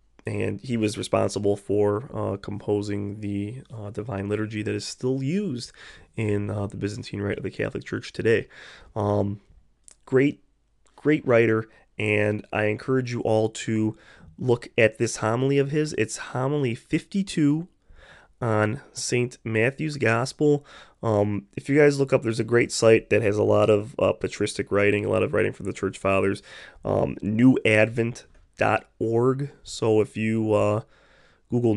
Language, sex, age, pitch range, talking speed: English, male, 20-39, 105-125 Hz, 160 wpm